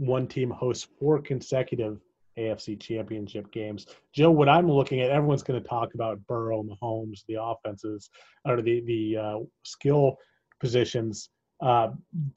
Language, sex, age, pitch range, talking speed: English, male, 30-49, 115-140 Hz, 140 wpm